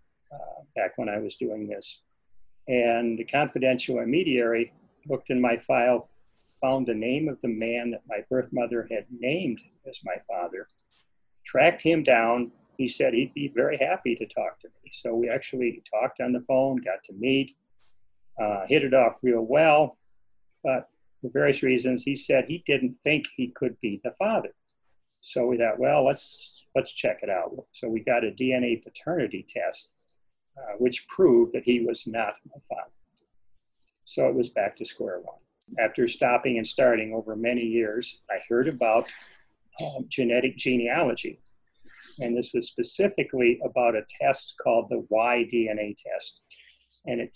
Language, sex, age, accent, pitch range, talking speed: English, male, 40-59, American, 115-130 Hz, 165 wpm